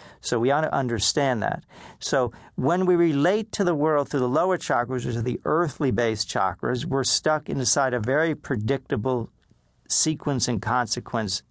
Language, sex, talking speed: English, male, 165 wpm